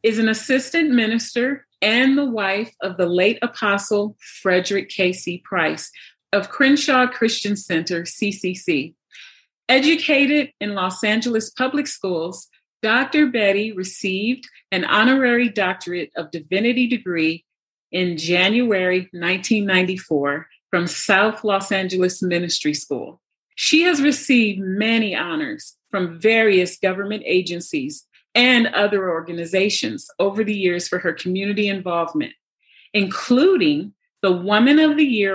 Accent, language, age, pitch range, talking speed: American, English, 40-59, 185-245 Hz, 115 wpm